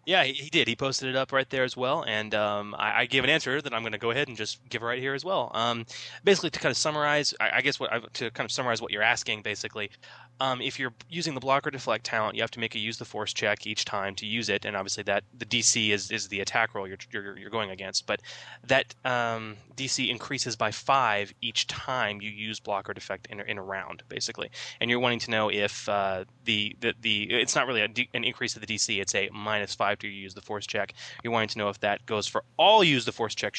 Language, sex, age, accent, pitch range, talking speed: English, male, 20-39, American, 105-130 Hz, 265 wpm